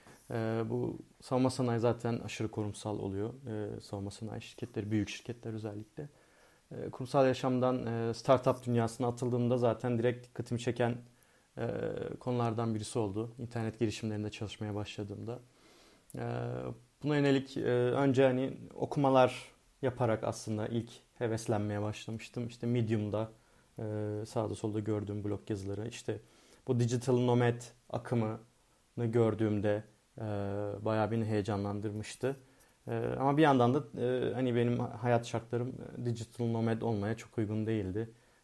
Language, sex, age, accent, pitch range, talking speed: Turkish, male, 40-59, native, 110-125 Hz, 125 wpm